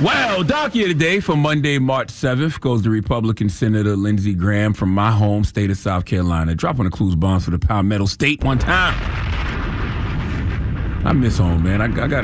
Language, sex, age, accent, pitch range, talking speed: English, male, 30-49, American, 100-125 Hz, 185 wpm